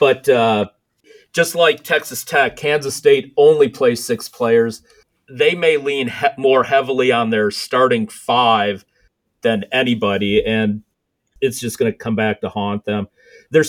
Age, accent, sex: 40-59, American, male